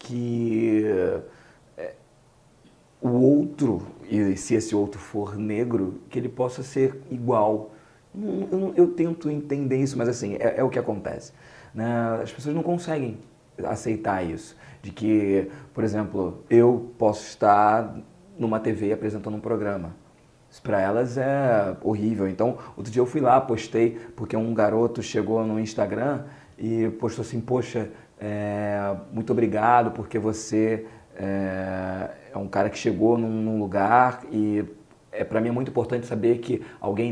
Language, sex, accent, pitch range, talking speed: Portuguese, male, Brazilian, 110-135 Hz, 145 wpm